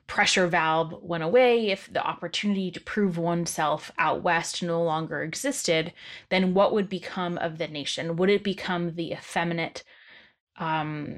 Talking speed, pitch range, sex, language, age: 150 wpm, 170-200 Hz, female, English, 20-39